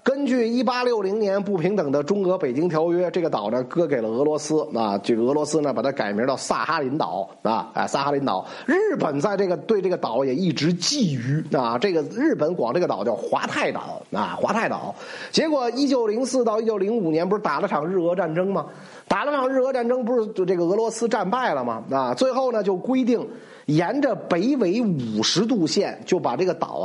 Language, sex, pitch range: Chinese, male, 170-240 Hz